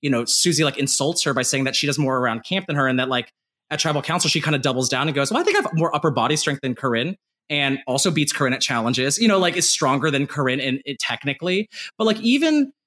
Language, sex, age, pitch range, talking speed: English, male, 20-39, 135-190 Hz, 270 wpm